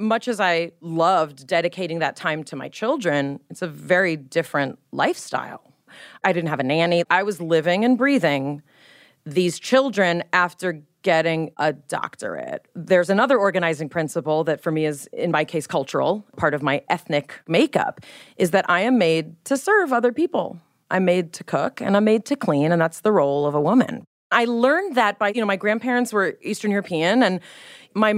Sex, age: female, 30-49